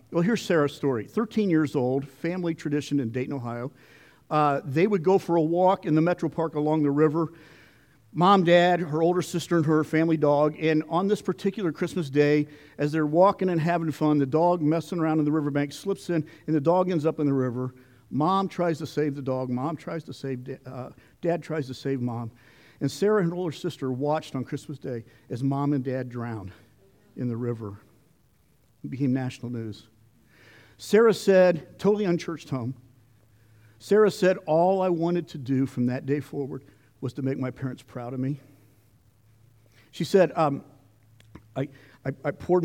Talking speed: 185 wpm